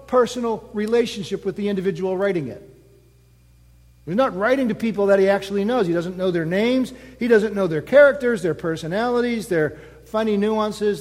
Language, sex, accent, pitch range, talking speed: English, male, American, 135-210 Hz, 170 wpm